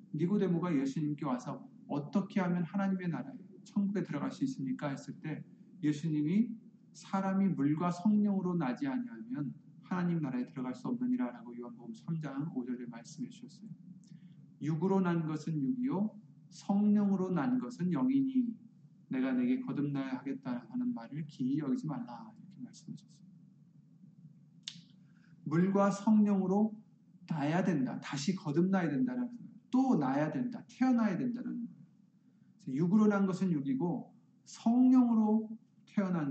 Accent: native